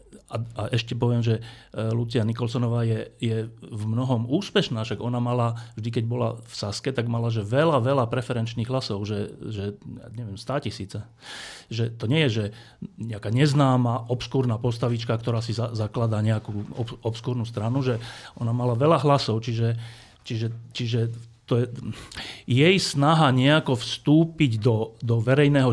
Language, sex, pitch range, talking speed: Slovak, male, 115-135 Hz, 160 wpm